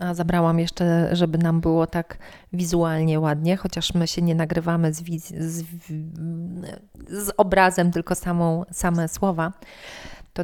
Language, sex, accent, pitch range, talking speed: Polish, female, native, 170-190 Hz, 140 wpm